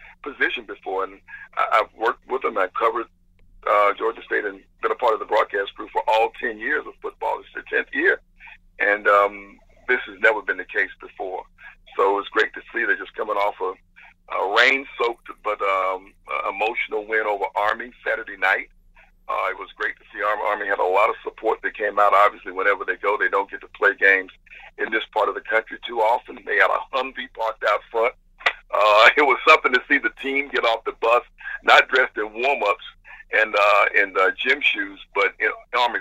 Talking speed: 210 wpm